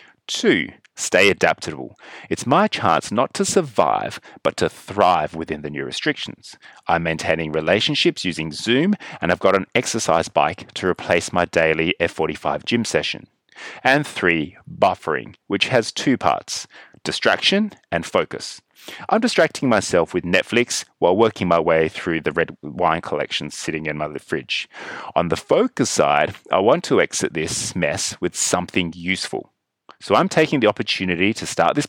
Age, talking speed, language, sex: 30-49, 155 wpm, English, male